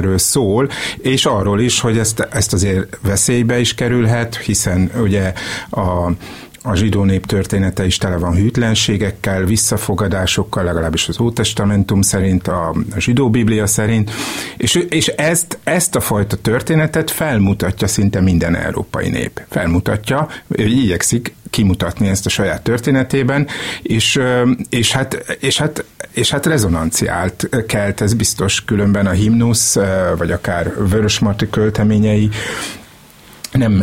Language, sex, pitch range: Hungarian, male, 95-115 Hz